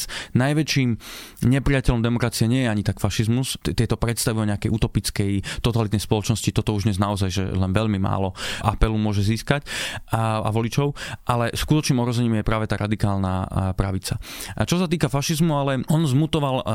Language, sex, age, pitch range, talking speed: Slovak, male, 20-39, 105-130 Hz, 160 wpm